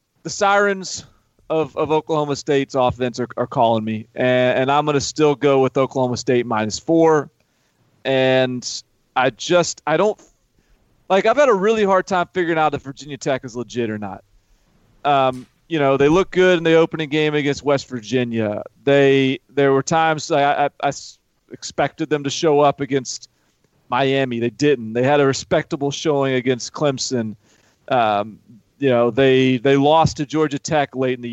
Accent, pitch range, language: American, 125-160 Hz, English